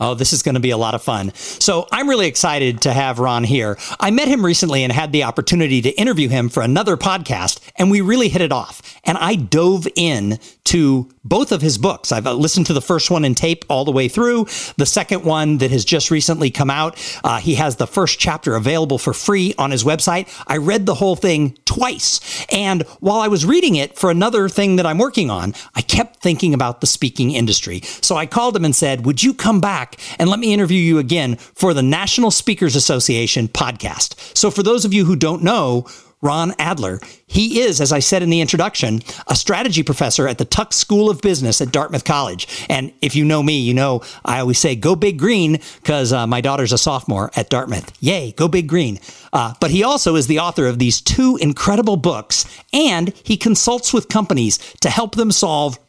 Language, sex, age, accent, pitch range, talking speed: English, male, 50-69, American, 130-195 Hz, 220 wpm